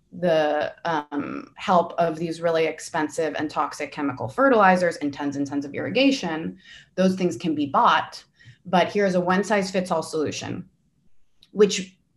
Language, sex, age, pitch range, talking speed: English, female, 20-39, 155-185 Hz, 155 wpm